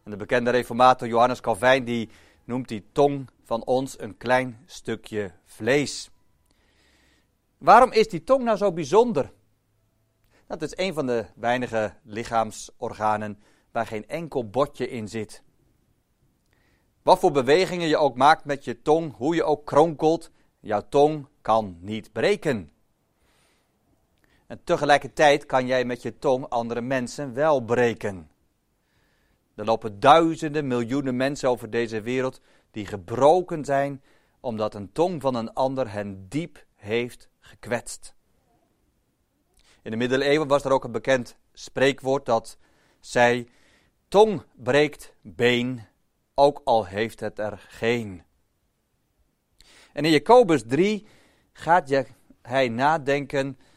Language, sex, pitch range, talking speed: Dutch, male, 110-145 Hz, 125 wpm